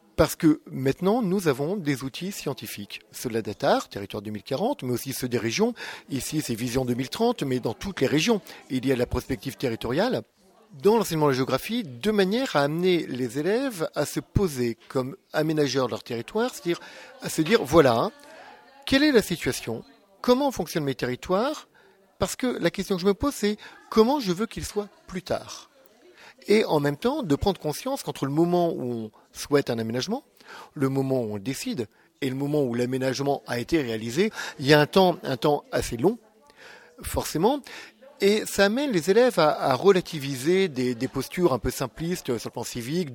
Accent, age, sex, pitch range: French, 50-69, male, 130-195 Hz